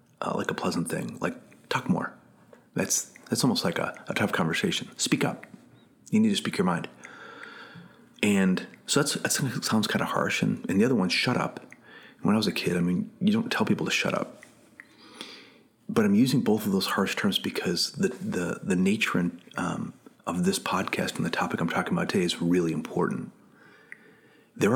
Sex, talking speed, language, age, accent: male, 200 wpm, English, 40-59, American